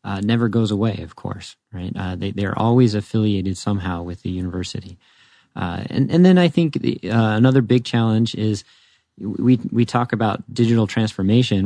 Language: English